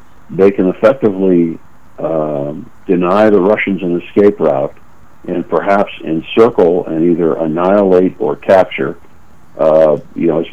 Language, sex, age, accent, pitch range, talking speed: English, male, 60-79, American, 80-100 Hz, 125 wpm